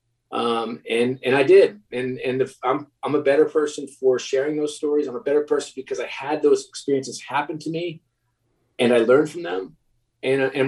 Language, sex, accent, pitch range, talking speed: English, male, American, 120-165 Hz, 200 wpm